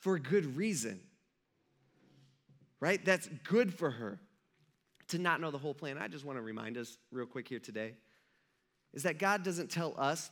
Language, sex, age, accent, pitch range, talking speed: English, male, 30-49, American, 135-190 Hz, 180 wpm